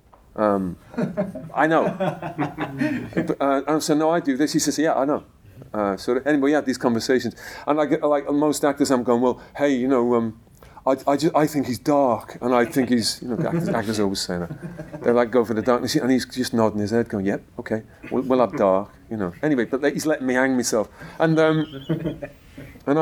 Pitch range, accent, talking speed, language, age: 105-150 Hz, British, 220 wpm, English, 40-59